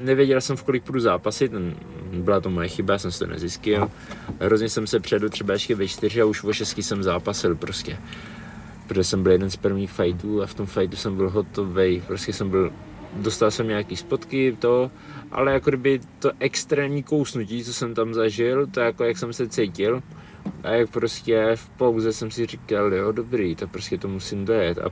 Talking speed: 200 wpm